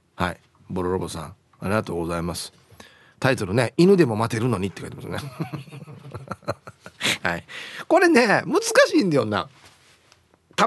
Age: 40-59